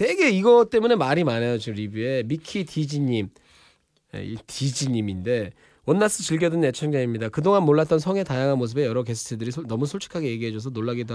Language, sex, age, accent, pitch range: Korean, male, 20-39, native, 120-170 Hz